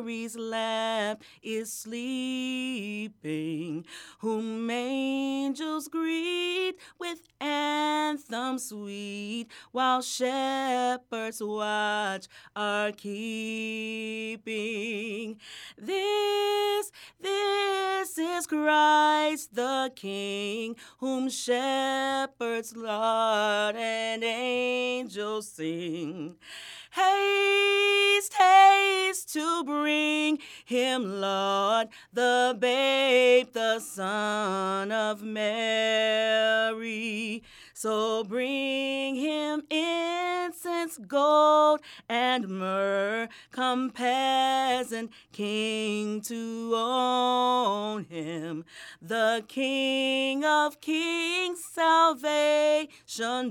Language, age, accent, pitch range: English, 30-49, American, 220-295 Hz